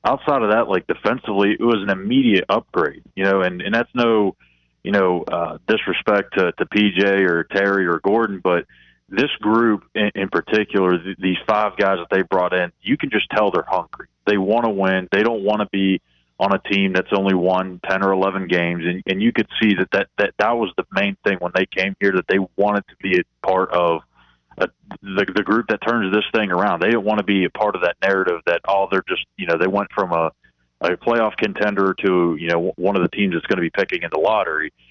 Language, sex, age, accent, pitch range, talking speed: English, male, 30-49, American, 90-105 Hz, 235 wpm